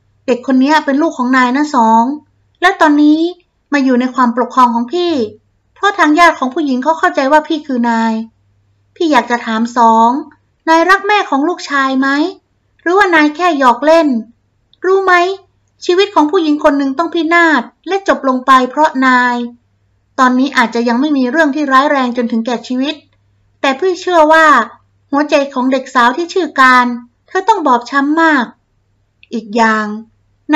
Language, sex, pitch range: Thai, female, 245-320 Hz